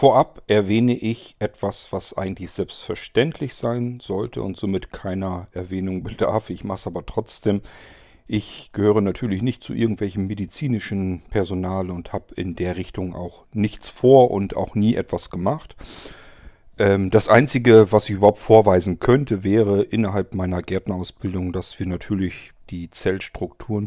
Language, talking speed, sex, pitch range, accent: German, 140 wpm, male, 90-105 Hz, German